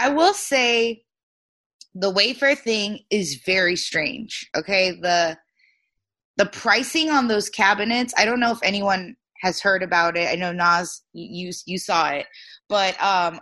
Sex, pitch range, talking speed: female, 175-230 Hz, 150 wpm